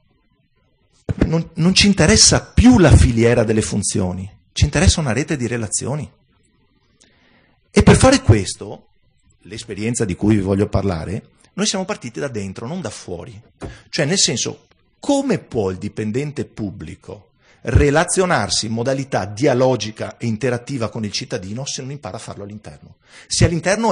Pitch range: 105-155 Hz